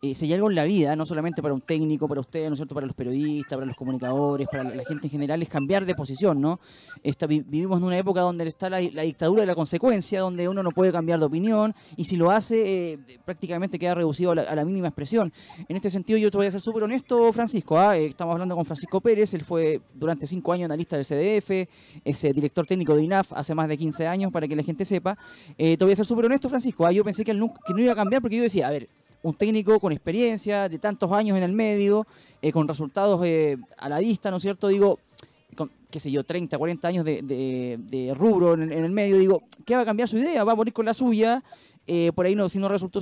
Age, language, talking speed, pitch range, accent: 20-39, Spanish, 260 wpm, 155-210 Hz, Argentinian